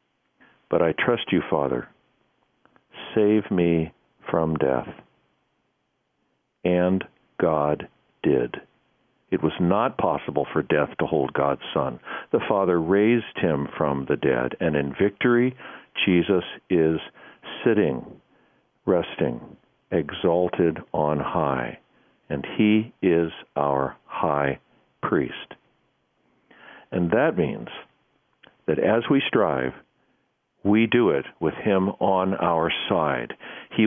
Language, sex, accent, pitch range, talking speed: English, male, American, 80-120 Hz, 110 wpm